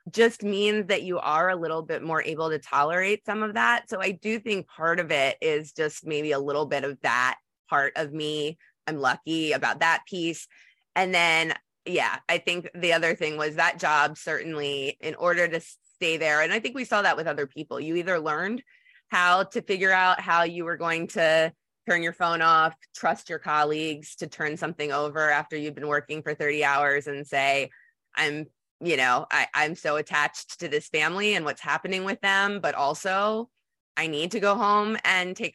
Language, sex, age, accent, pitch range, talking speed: English, female, 20-39, American, 145-175 Hz, 200 wpm